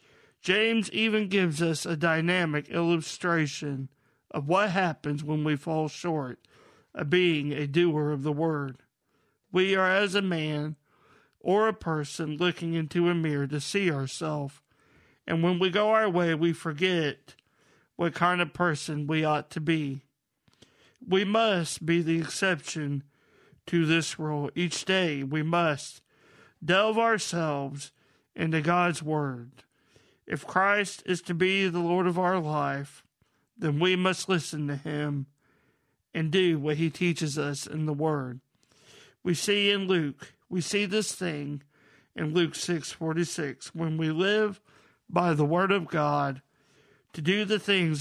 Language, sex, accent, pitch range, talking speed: English, male, American, 145-180 Hz, 145 wpm